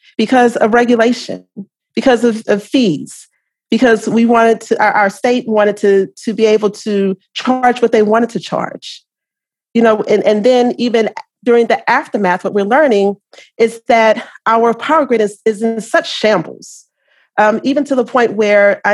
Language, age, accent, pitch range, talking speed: English, 40-59, American, 195-235 Hz, 175 wpm